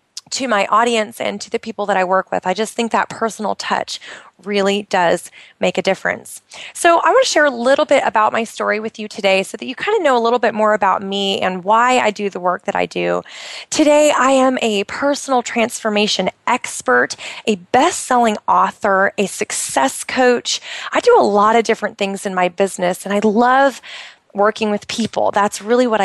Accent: American